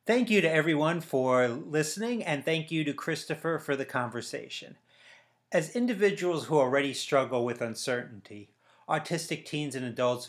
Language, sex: English, male